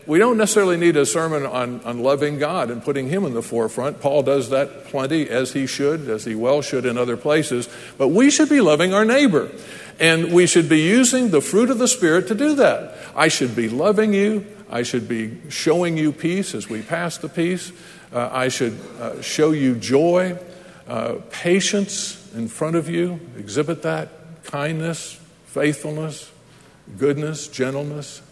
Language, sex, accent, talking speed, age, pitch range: English, male, American, 180 wpm, 60-79, 125-170 Hz